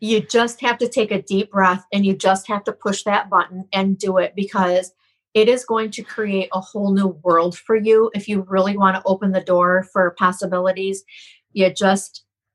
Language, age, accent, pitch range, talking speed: English, 40-59, American, 185-215 Hz, 205 wpm